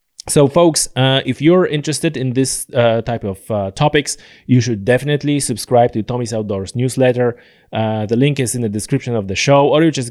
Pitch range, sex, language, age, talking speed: 105-135 Hz, male, English, 30-49, 200 wpm